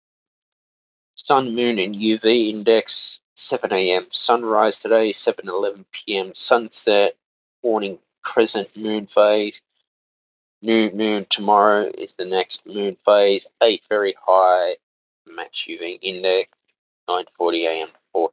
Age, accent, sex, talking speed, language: 20-39, Australian, male, 110 wpm, English